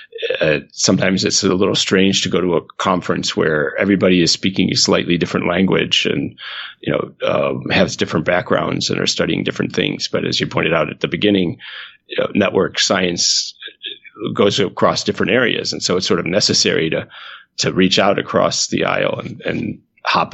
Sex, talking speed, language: male, 180 wpm, English